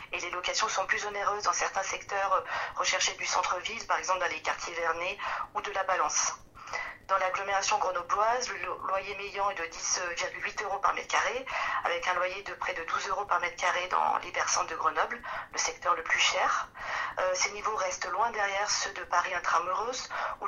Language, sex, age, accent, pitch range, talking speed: French, female, 40-59, French, 185-215 Hz, 195 wpm